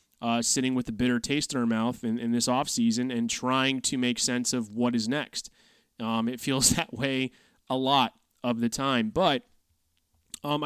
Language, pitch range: English, 125-155 Hz